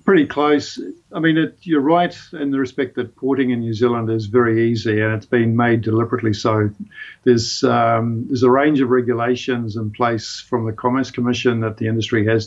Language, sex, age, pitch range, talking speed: English, male, 50-69, 115-130 Hz, 195 wpm